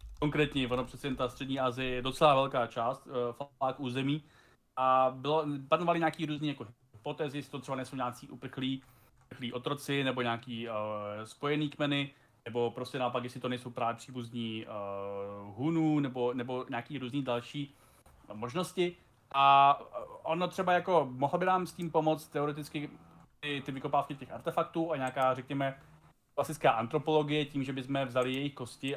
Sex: male